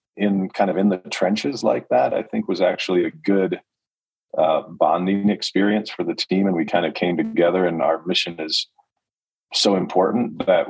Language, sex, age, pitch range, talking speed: English, male, 40-59, 85-105 Hz, 185 wpm